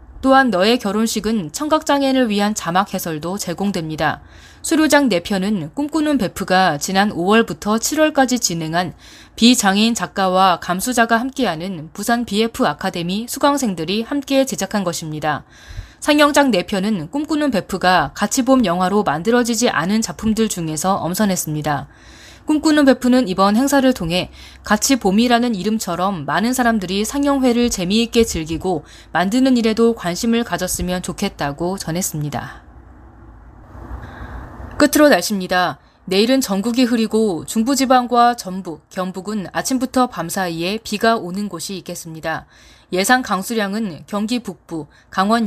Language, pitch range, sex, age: Korean, 180-245 Hz, female, 20-39